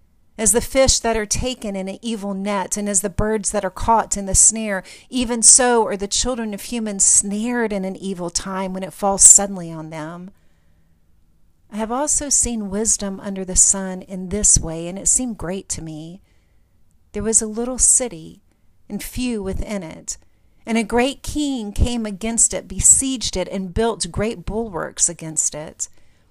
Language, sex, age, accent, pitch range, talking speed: English, female, 50-69, American, 175-220 Hz, 180 wpm